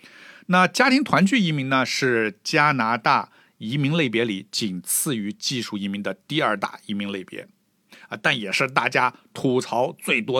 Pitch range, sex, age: 110-160 Hz, male, 50-69